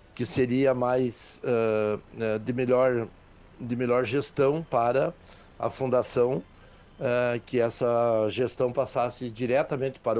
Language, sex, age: Portuguese, male, 60-79